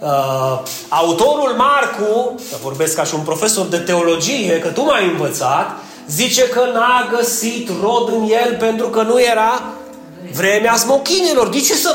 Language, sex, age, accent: Romanian, male, 30-49, native